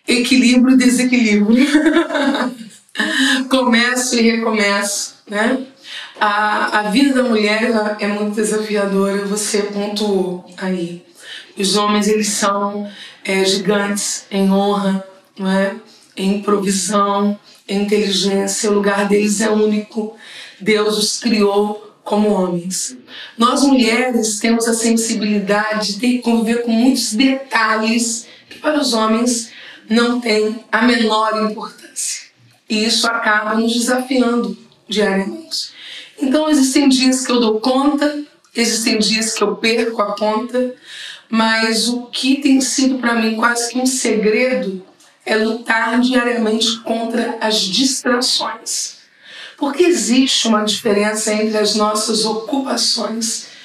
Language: Portuguese